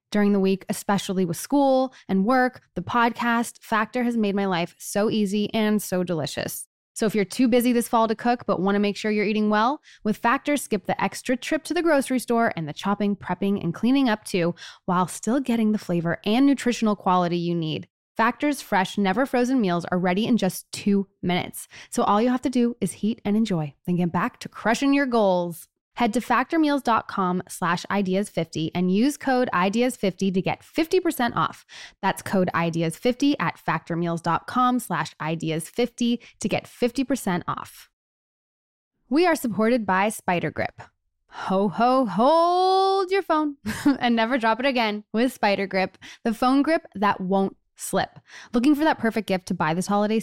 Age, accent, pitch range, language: 10-29, American, 190-250 Hz, English